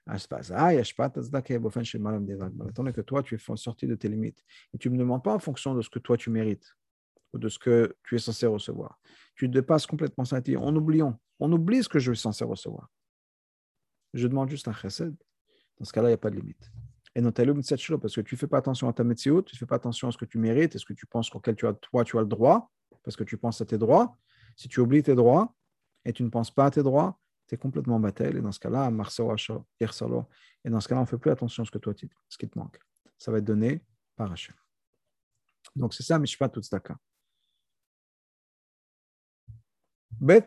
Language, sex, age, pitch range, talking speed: French, male, 50-69, 115-145 Hz, 235 wpm